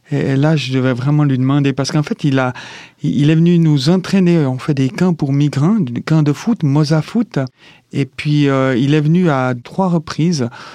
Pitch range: 135-175 Hz